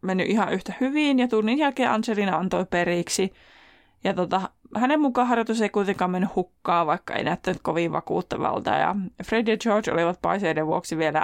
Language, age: Finnish, 20-39